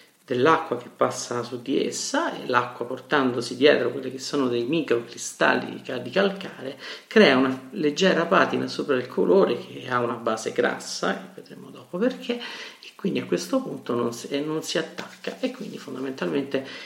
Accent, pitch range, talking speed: native, 125-170 Hz, 155 wpm